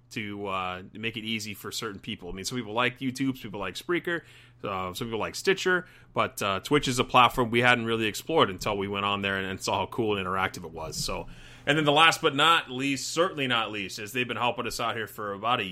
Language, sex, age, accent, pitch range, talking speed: English, male, 30-49, American, 110-140 Hz, 260 wpm